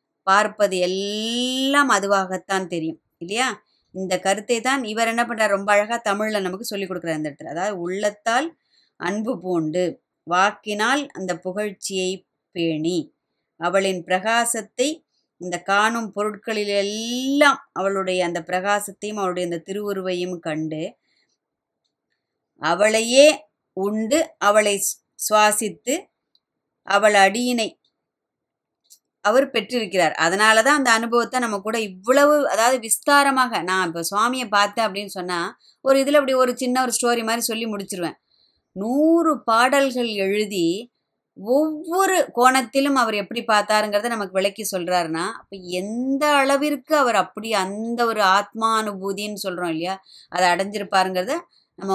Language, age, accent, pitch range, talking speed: Tamil, 20-39, native, 190-245 Hz, 110 wpm